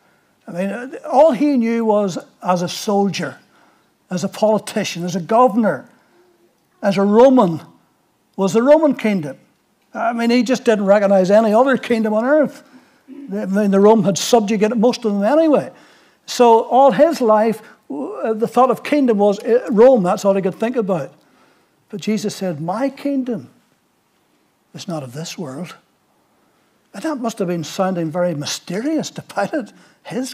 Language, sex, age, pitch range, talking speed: English, male, 60-79, 190-245 Hz, 160 wpm